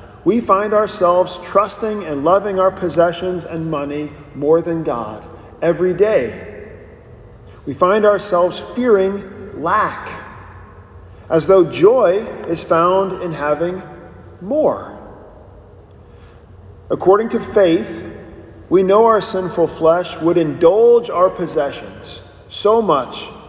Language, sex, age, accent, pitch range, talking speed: English, male, 40-59, American, 135-195 Hz, 105 wpm